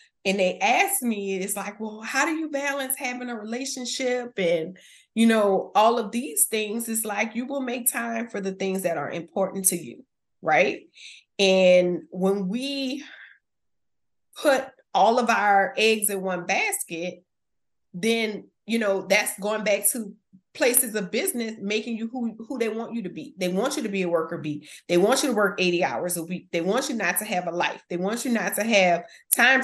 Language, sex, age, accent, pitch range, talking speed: English, female, 30-49, American, 185-245 Hz, 200 wpm